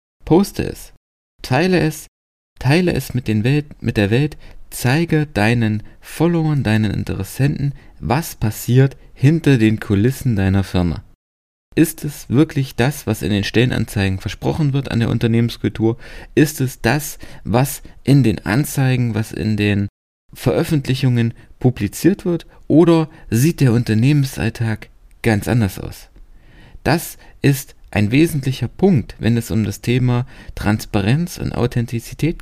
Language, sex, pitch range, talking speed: German, male, 105-140 Hz, 130 wpm